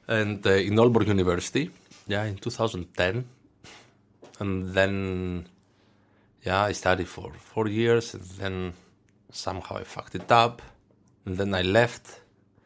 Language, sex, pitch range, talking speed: Danish, male, 100-120 Hz, 130 wpm